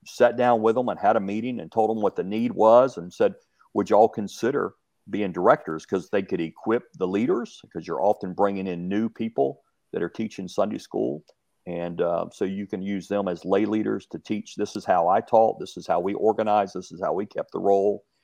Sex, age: male, 50-69